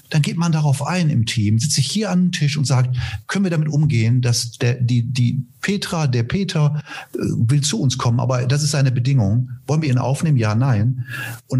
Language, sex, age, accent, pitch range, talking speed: German, male, 50-69, German, 110-140 Hz, 220 wpm